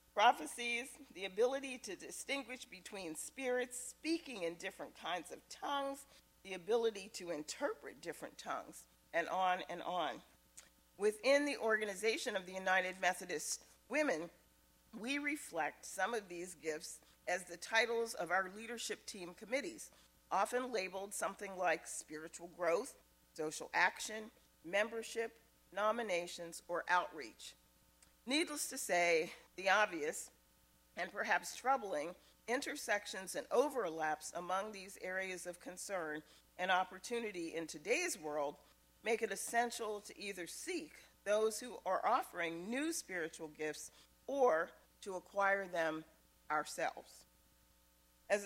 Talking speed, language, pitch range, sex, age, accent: 120 wpm, English, 170-230 Hz, female, 40-59, American